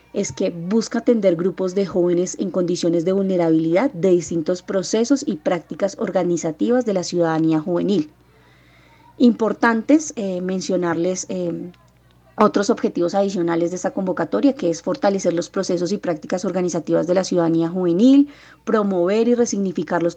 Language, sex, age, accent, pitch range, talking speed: Spanish, female, 30-49, Colombian, 170-210 Hz, 135 wpm